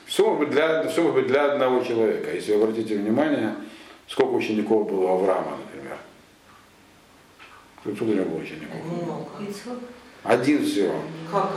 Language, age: Russian, 50-69